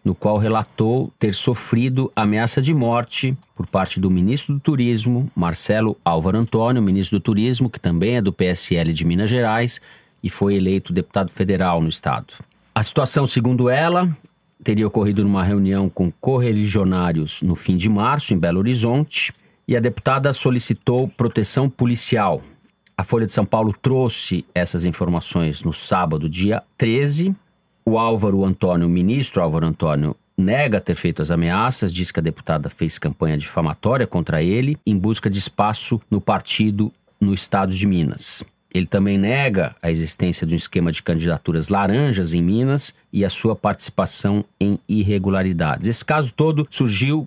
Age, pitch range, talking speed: 40-59, 95-125 Hz, 160 wpm